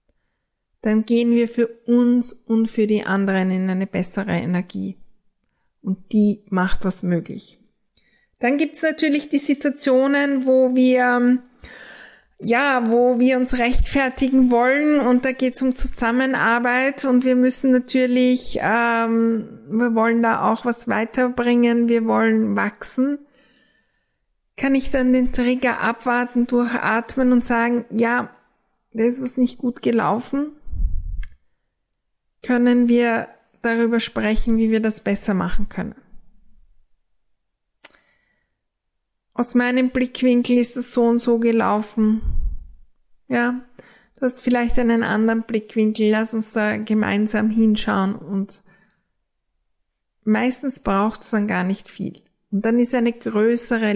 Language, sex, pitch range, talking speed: German, female, 215-250 Hz, 125 wpm